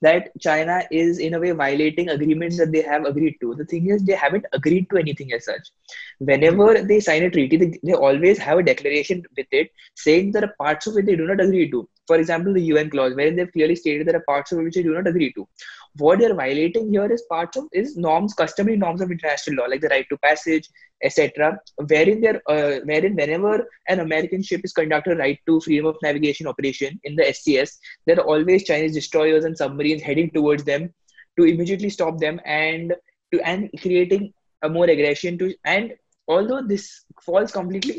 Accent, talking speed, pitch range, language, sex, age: Indian, 215 wpm, 150-185 Hz, English, male, 20-39